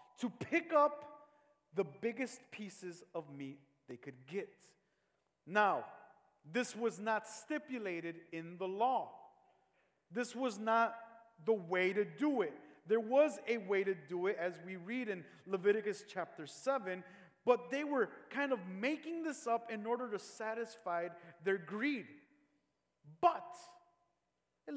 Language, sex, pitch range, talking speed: English, male, 195-260 Hz, 140 wpm